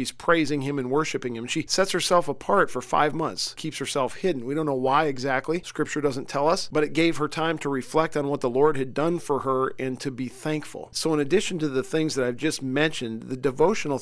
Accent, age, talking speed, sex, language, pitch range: American, 40-59, 240 wpm, male, English, 135-160 Hz